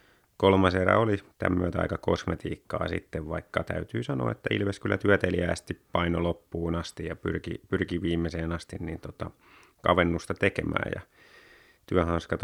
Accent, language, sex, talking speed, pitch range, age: native, Finnish, male, 135 wpm, 85-95 Hz, 30-49